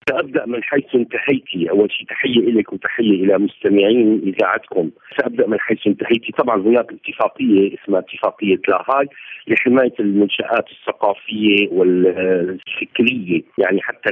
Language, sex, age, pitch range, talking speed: Arabic, male, 50-69, 115-190 Hz, 120 wpm